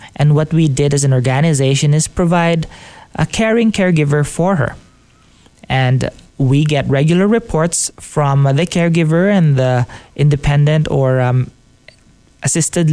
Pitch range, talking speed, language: 135-170 Hz, 130 wpm, English